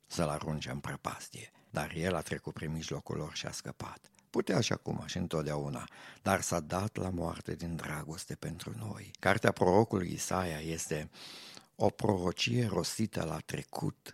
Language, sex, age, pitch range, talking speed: Romanian, male, 50-69, 80-95 Hz, 155 wpm